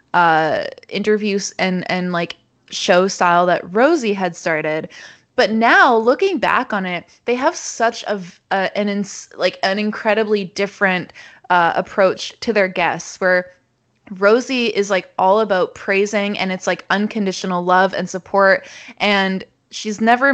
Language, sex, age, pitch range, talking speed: English, female, 20-39, 180-215 Hz, 150 wpm